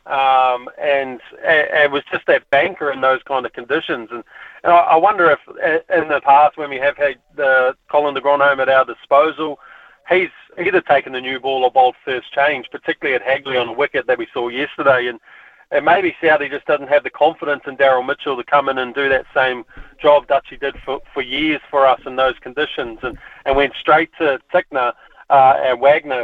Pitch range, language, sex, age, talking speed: 130-150 Hz, English, male, 30-49, 210 wpm